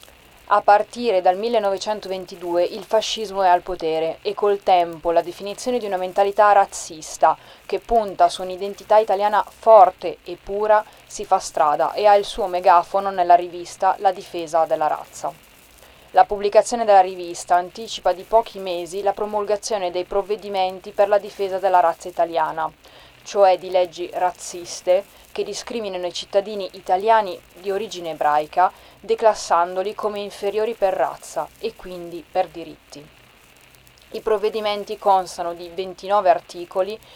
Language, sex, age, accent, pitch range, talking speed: Italian, female, 30-49, native, 175-215 Hz, 135 wpm